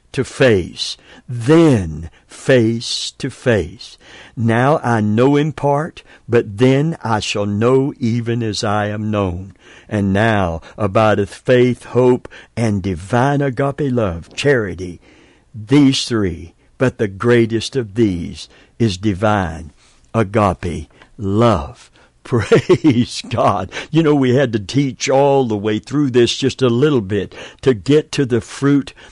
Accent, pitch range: American, 105-135 Hz